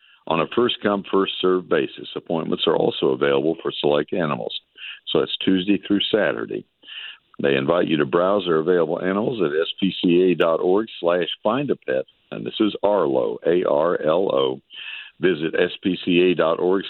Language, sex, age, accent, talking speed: English, male, 60-79, American, 130 wpm